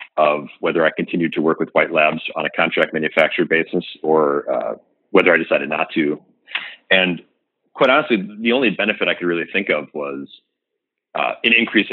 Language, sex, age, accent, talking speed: English, male, 40-59, American, 180 wpm